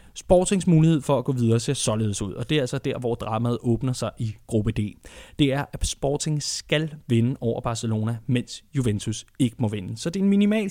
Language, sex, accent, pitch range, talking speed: Danish, male, native, 110-145 Hz, 220 wpm